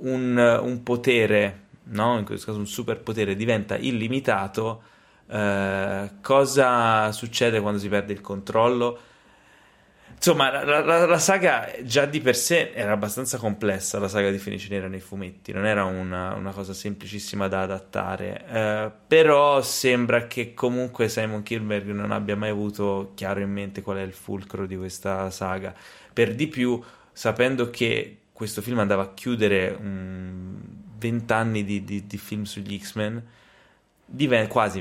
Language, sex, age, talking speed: Italian, male, 20-39, 150 wpm